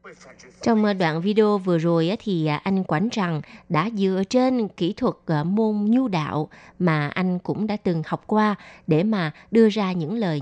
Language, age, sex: Vietnamese, 20-39, female